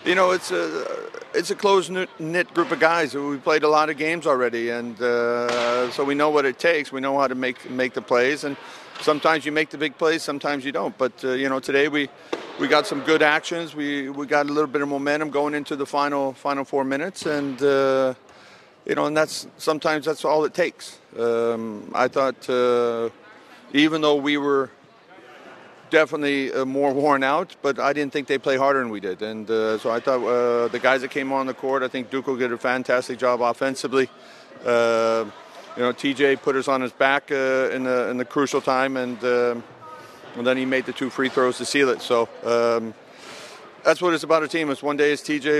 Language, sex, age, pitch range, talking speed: Dutch, male, 50-69, 125-150 Hz, 220 wpm